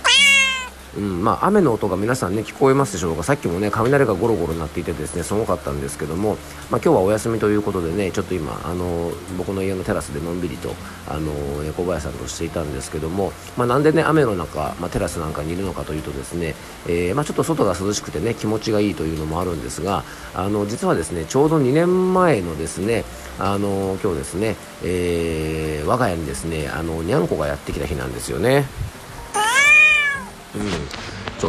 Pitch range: 80-115 Hz